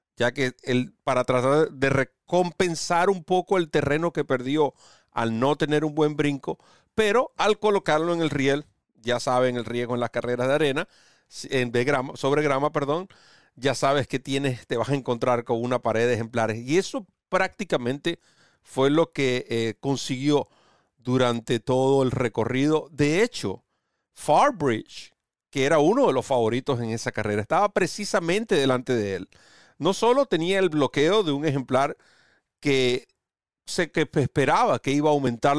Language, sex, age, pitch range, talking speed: Spanish, male, 40-59, 120-150 Hz, 165 wpm